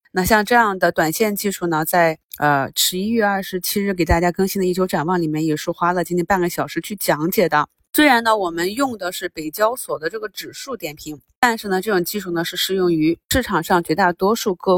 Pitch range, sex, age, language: 165-200 Hz, female, 30-49, Chinese